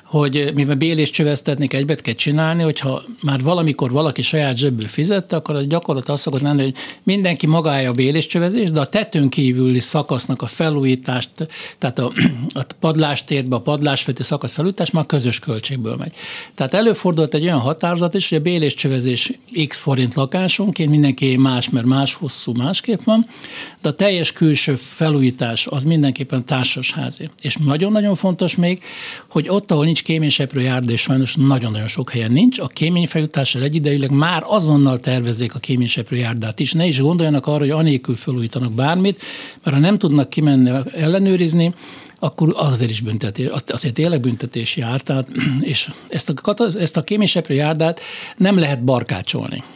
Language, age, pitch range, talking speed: Hungarian, 60-79, 130-165 Hz, 150 wpm